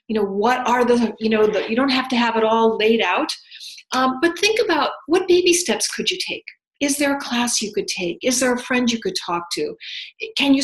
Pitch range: 215-270 Hz